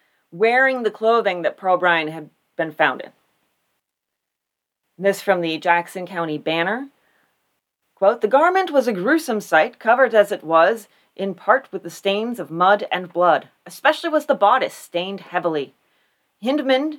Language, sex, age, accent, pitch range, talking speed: English, female, 30-49, American, 165-235 Hz, 150 wpm